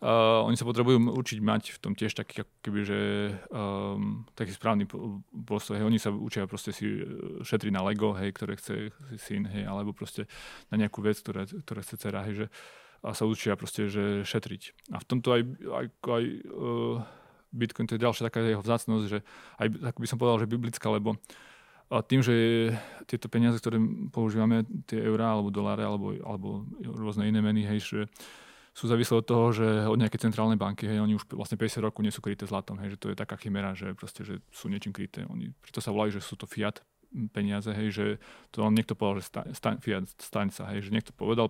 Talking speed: 205 wpm